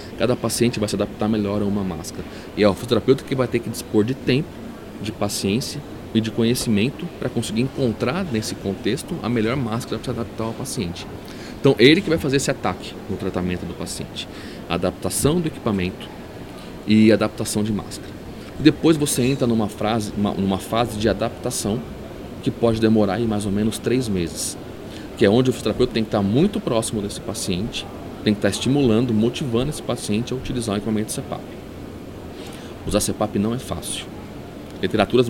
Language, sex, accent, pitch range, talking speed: Portuguese, male, Brazilian, 100-125 Hz, 180 wpm